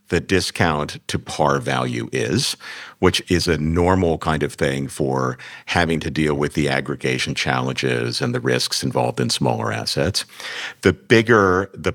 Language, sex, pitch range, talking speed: English, male, 70-90 Hz, 155 wpm